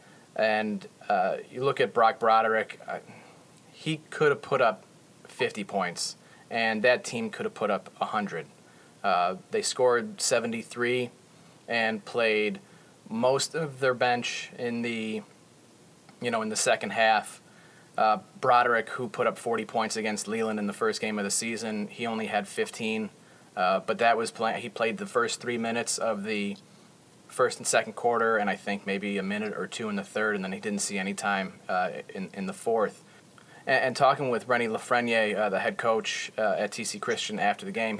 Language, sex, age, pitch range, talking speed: English, male, 30-49, 110-155 Hz, 185 wpm